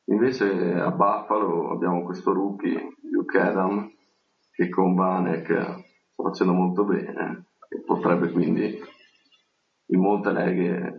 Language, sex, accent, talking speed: Italian, male, native, 115 wpm